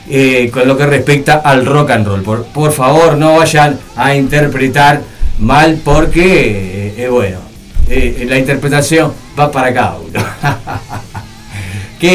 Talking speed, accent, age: 145 wpm, Argentinian, 40-59